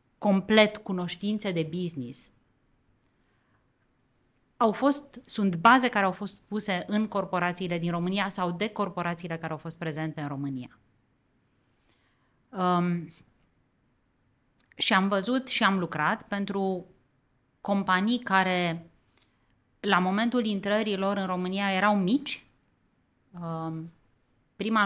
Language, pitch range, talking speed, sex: Romanian, 155-200 Hz, 105 wpm, female